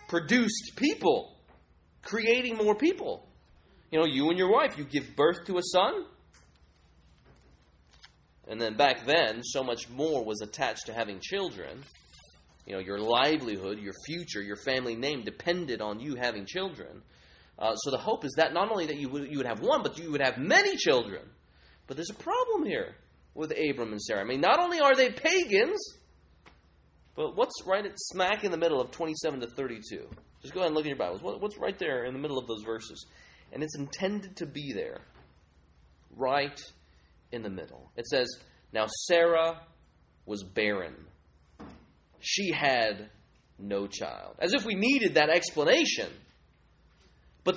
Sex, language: male, English